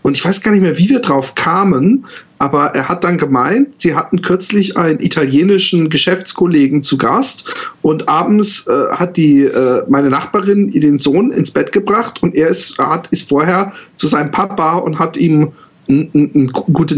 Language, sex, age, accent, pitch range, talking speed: German, male, 40-59, German, 150-195 Hz, 180 wpm